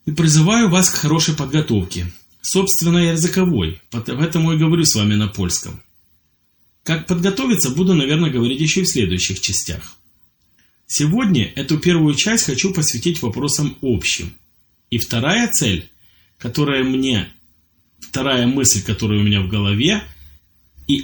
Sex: male